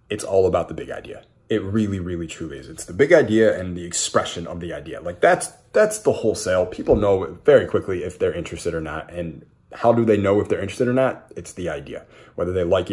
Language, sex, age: English, male, 30-49